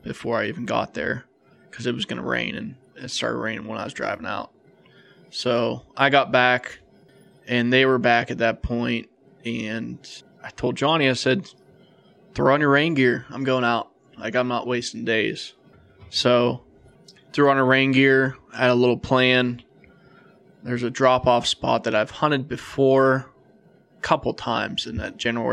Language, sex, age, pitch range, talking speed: English, male, 20-39, 120-135 Hz, 170 wpm